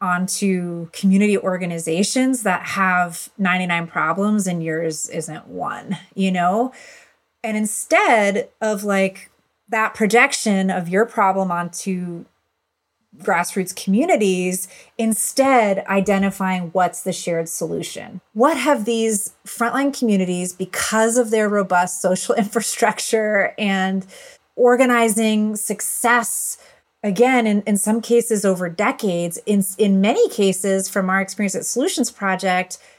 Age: 30-49